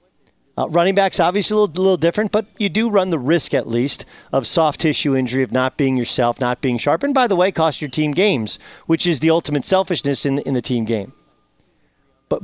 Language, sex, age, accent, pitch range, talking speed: English, male, 40-59, American, 140-200 Hz, 220 wpm